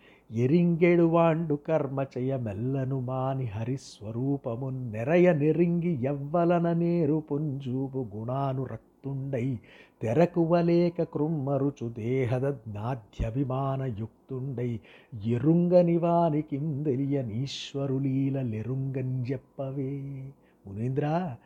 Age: 60-79